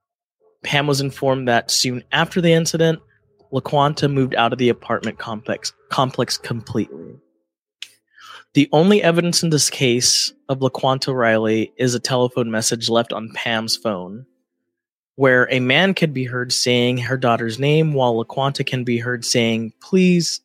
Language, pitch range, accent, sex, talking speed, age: English, 115-145 Hz, American, male, 150 wpm, 20-39